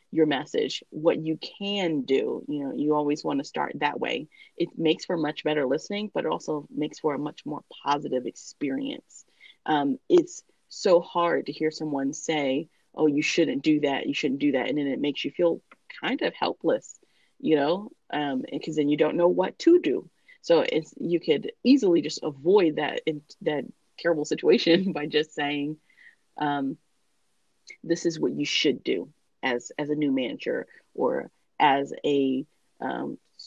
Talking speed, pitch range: 175 wpm, 145-200 Hz